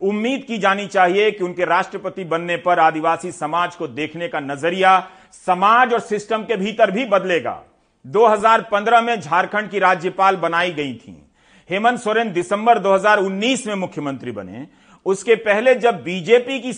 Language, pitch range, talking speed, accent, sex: Hindi, 175-220 Hz, 150 wpm, native, male